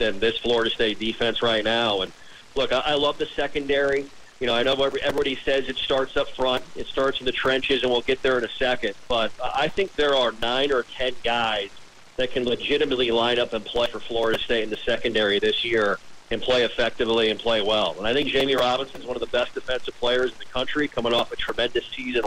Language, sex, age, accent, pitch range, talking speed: English, male, 40-59, American, 120-145 Hz, 230 wpm